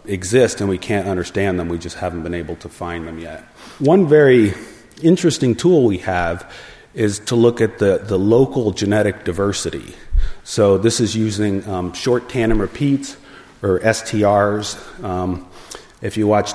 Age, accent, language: 30-49, American, English